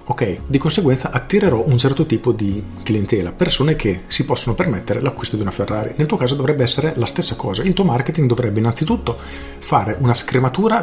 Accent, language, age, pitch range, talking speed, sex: native, Italian, 40-59, 110-145 Hz, 190 wpm, male